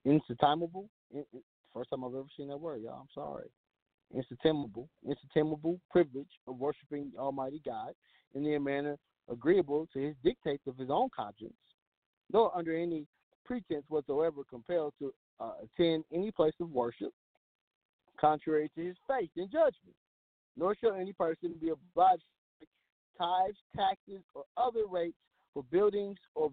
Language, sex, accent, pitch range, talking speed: English, male, American, 125-170 Hz, 145 wpm